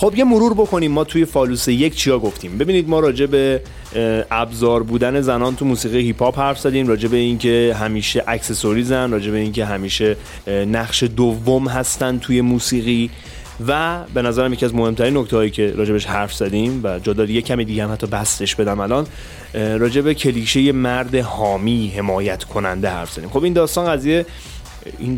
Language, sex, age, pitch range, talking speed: Persian, male, 30-49, 105-130 Hz, 175 wpm